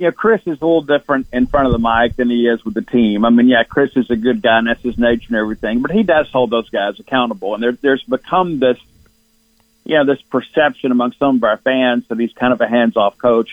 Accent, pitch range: American, 120-140 Hz